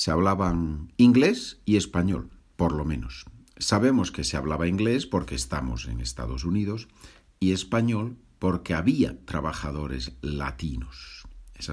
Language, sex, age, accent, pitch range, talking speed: Spanish, male, 50-69, Spanish, 70-100 Hz, 130 wpm